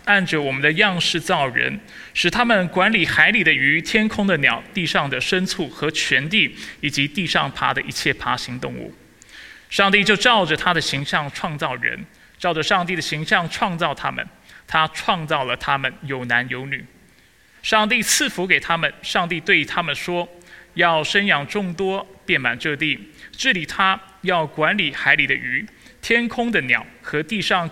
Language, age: Chinese, 20-39